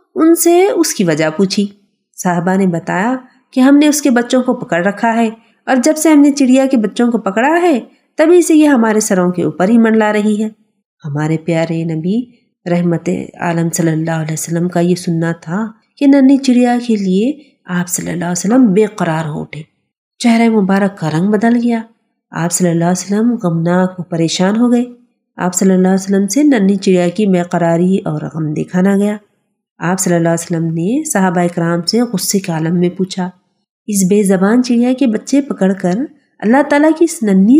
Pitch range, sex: 180-265 Hz, female